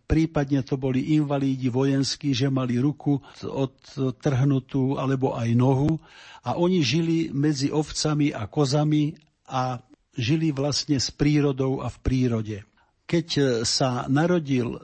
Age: 50-69